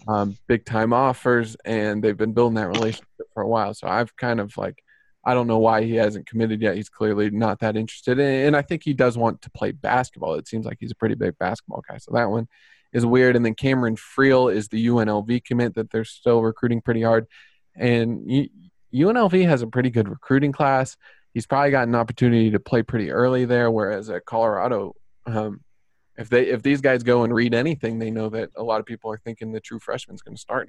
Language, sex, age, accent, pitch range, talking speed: English, male, 20-39, American, 110-125 Hz, 225 wpm